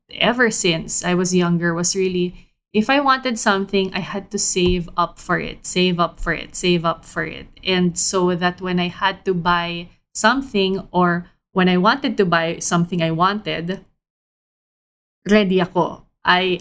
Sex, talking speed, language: female, 170 wpm, English